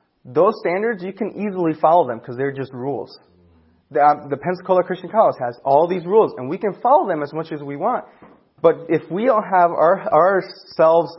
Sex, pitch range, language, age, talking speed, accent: male, 135-180 Hz, English, 30-49, 200 wpm, American